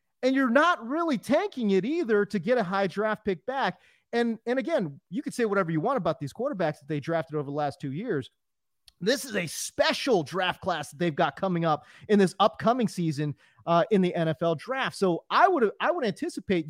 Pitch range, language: 155-230 Hz, English